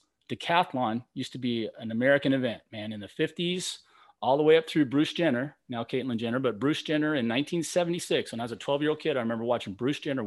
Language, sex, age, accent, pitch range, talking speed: English, male, 30-49, American, 110-135 Hz, 230 wpm